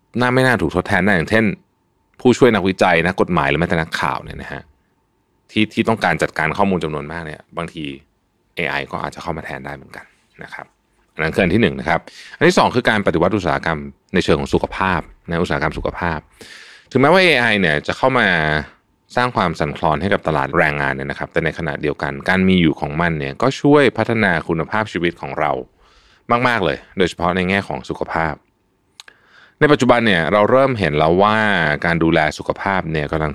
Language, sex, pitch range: Thai, male, 75-100 Hz